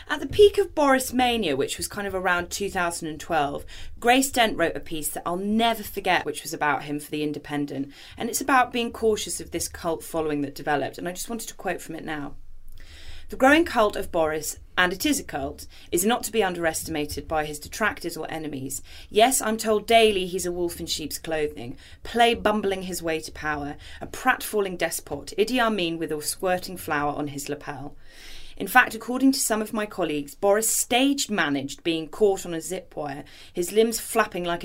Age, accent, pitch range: 30-49, British, 155-210 Hz